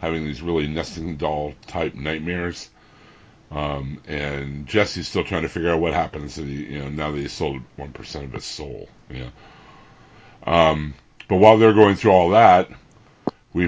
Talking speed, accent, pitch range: 165 wpm, American, 70-90 Hz